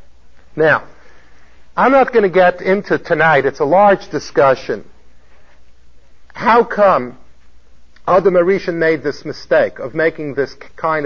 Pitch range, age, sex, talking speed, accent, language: 155-215 Hz, 50-69, male, 125 wpm, American, English